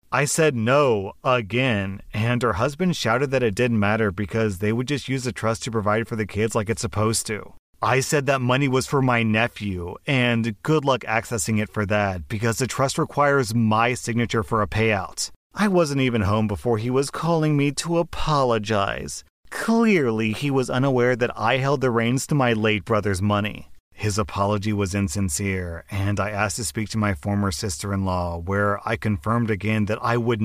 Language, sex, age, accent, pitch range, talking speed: English, male, 30-49, American, 105-130 Hz, 190 wpm